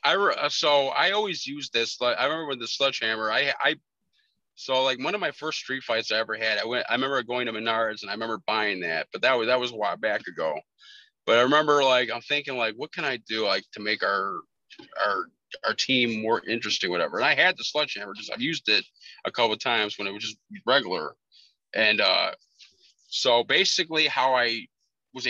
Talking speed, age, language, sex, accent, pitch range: 220 wpm, 30-49, English, male, American, 115-140 Hz